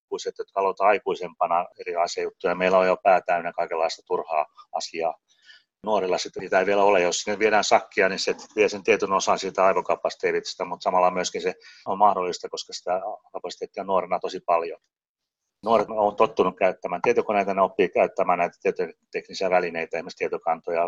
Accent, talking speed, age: native, 160 wpm, 30-49